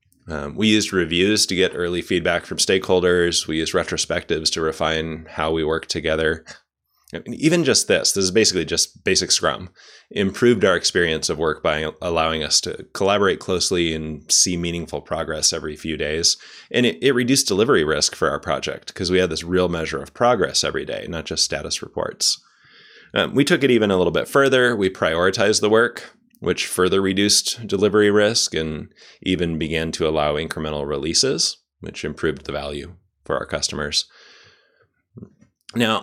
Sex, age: male, 20-39